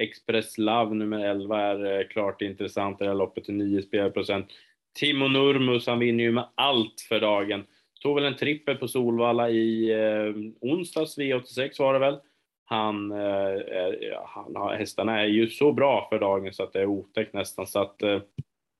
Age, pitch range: 20-39, 100-120 Hz